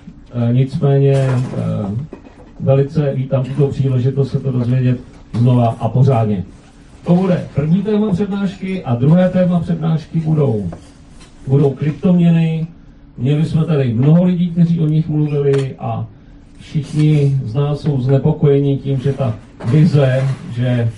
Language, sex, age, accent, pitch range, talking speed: Czech, male, 40-59, native, 130-155 Hz, 125 wpm